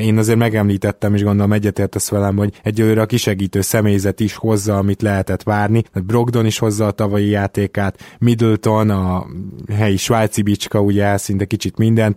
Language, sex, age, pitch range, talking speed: Hungarian, male, 20-39, 100-115 Hz, 165 wpm